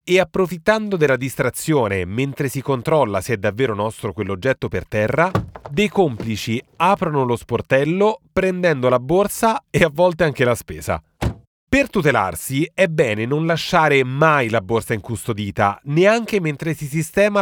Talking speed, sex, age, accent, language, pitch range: 145 wpm, male, 30-49, native, Italian, 115-175 Hz